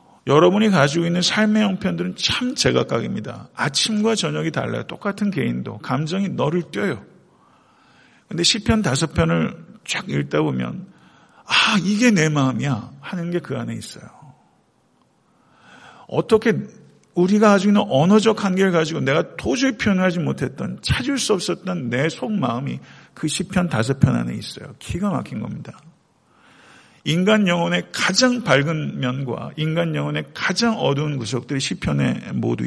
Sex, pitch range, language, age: male, 125-190 Hz, Korean, 50-69